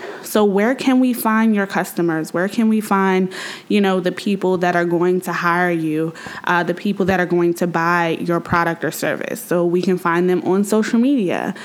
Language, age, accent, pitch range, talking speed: English, 20-39, American, 175-205 Hz, 210 wpm